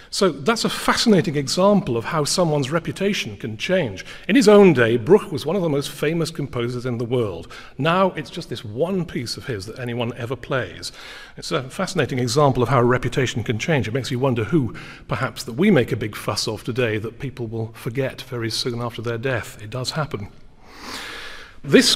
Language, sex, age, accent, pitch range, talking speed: English, male, 40-59, British, 115-160 Hz, 205 wpm